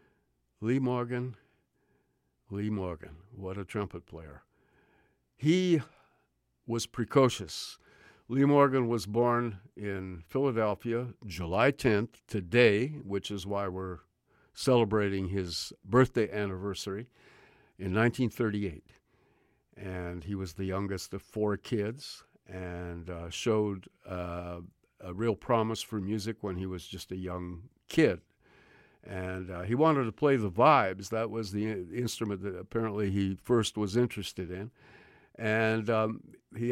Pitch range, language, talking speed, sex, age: 95-120 Hz, English, 125 wpm, male, 60-79